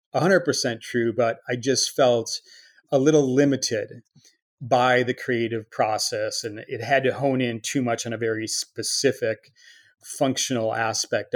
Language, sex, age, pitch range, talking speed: English, male, 30-49, 115-140 Hz, 135 wpm